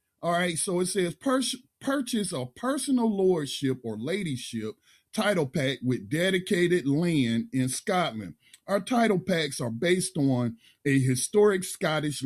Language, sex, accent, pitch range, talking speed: English, male, American, 130-185 Hz, 135 wpm